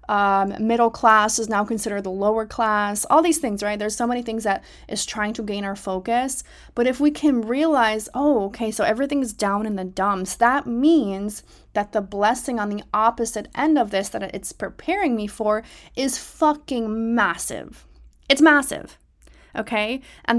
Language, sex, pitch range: English, female, 210-255 Hz